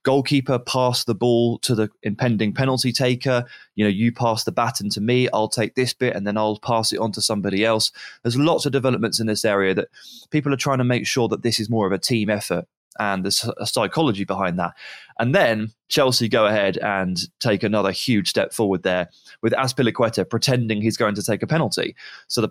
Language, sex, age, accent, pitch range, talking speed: English, male, 20-39, British, 105-125 Hz, 215 wpm